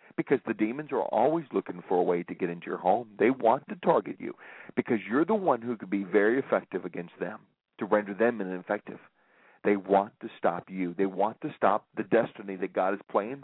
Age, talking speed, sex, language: 40-59, 220 wpm, male, English